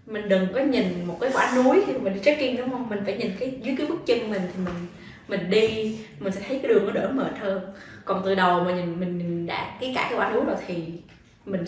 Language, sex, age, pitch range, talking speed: Vietnamese, female, 20-39, 185-240 Hz, 260 wpm